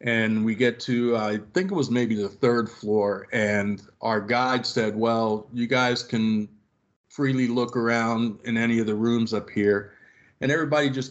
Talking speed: 180 wpm